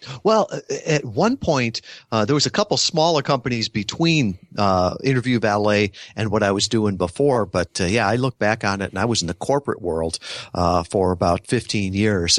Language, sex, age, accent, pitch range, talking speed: English, male, 50-69, American, 95-120 Hz, 200 wpm